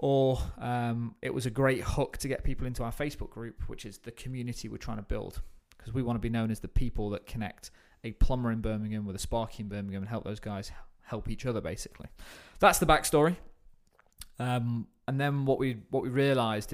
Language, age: English, 20-39